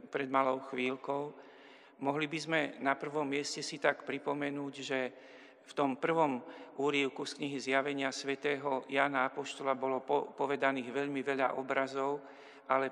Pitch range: 130-145 Hz